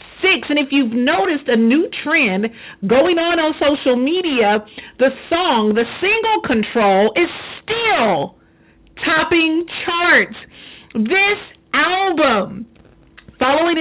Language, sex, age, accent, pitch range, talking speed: English, female, 50-69, American, 245-350 Hz, 105 wpm